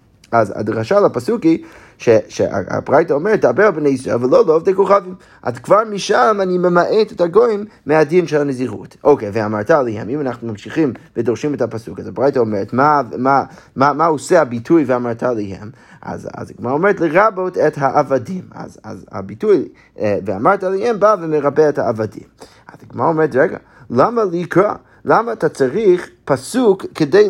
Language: Hebrew